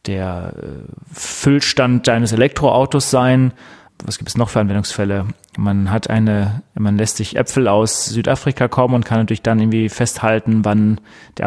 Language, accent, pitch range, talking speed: German, German, 105-125 Hz, 150 wpm